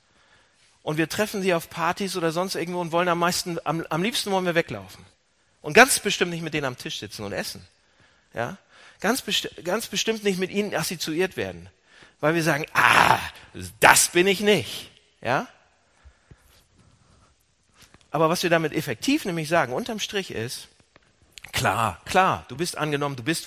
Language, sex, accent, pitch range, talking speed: German, male, German, 150-220 Hz, 170 wpm